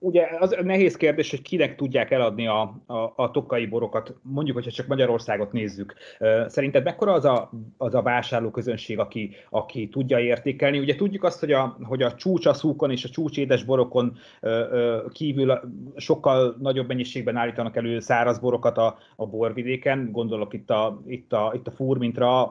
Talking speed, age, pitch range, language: 155 wpm, 30-49, 115-140 Hz, Hungarian